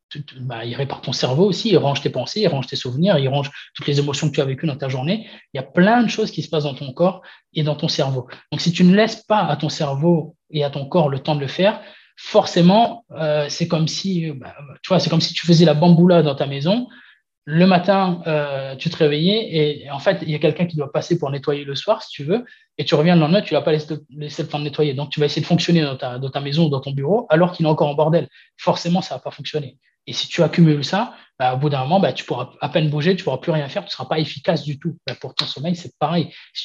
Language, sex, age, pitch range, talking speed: French, male, 20-39, 145-175 Hz, 290 wpm